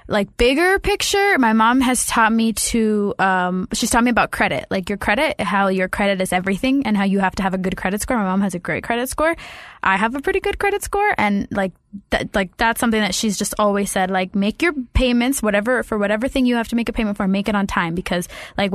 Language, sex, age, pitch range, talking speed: English, female, 10-29, 195-245 Hz, 255 wpm